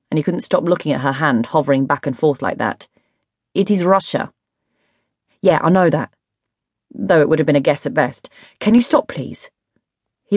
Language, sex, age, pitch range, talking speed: English, female, 30-49, 145-185 Hz, 205 wpm